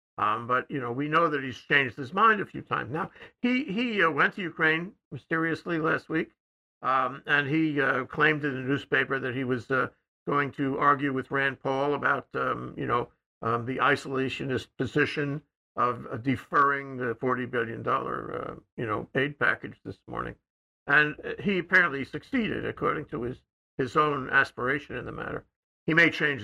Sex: male